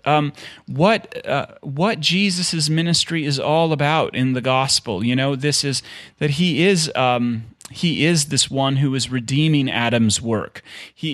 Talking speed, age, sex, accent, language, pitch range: 160 wpm, 30-49, male, American, English, 125-150 Hz